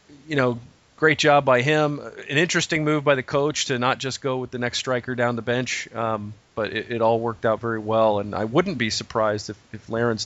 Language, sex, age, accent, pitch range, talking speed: English, male, 40-59, American, 110-125 Hz, 235 wpm